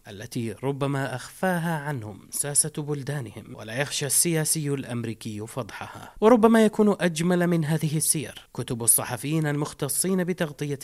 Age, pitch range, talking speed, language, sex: 30-49, 130-165 Hz, 115 wpm, Arabic, male